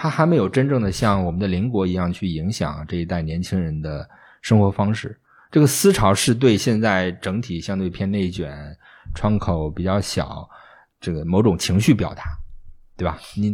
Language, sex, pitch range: Chinese, male, 90-125 Hz